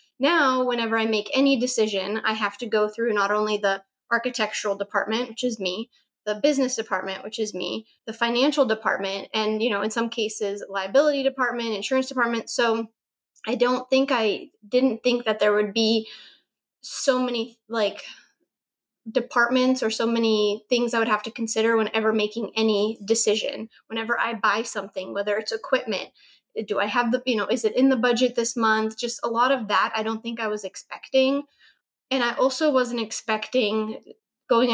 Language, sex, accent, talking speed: English, female, American, 180 wpm